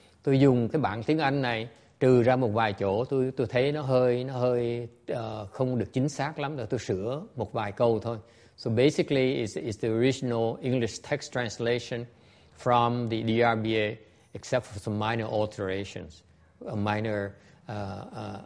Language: English